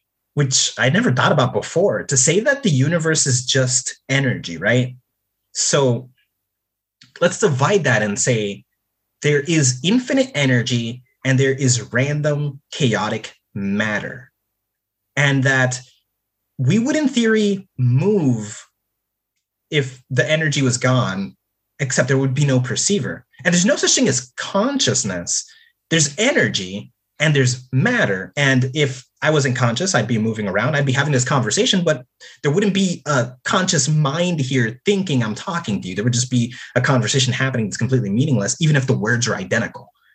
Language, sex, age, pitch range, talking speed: English, male, 30-49, 120-155 Hz, 155 wpm